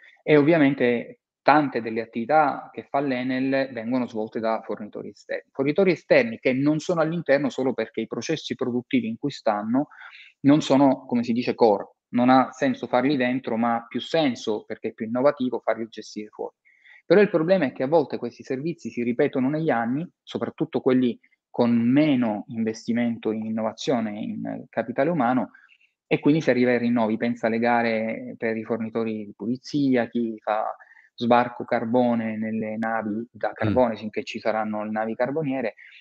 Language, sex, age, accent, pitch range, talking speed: Italian, male, 20-39, native, 115-145 Hz, 170 wpm